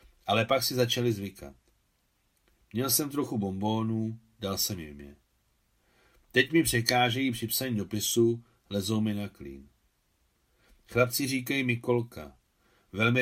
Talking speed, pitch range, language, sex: 125 wpm, 95-125 Hz, Czech, male